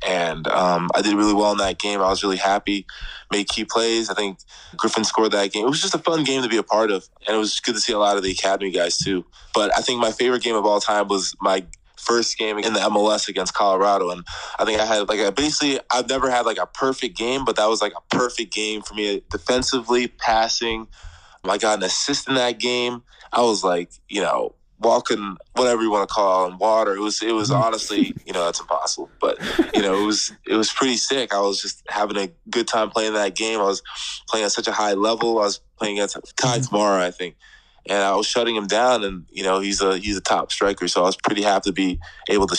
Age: 20-39